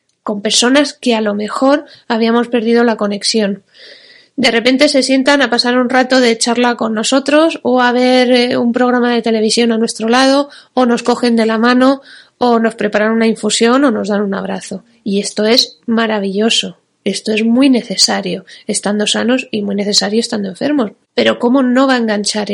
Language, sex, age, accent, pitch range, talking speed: Spanish, female, 20-39, Spanish, 210-245 Hz, 185 wpm